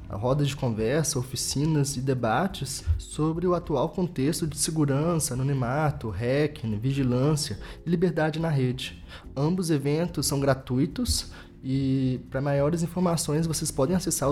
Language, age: Portuguese, 20-39